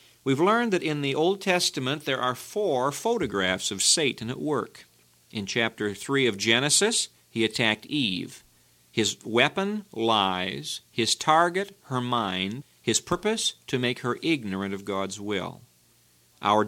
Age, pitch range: 50-69, 100-145 Hz